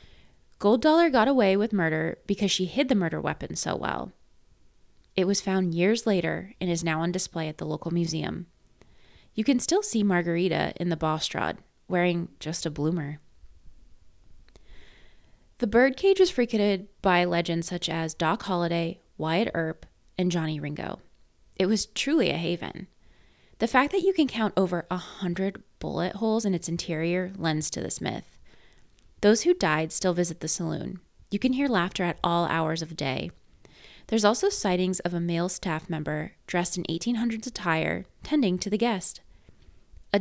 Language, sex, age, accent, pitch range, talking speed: English, female, 20-39, American, 165-205 Hz, 165 wpm